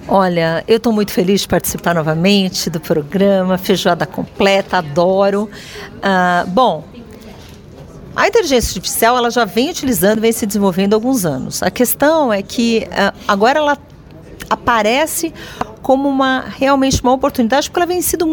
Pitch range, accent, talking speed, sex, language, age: 185-280 Hz, Brazilian, 145 wpm, female, Portuguese, 50-69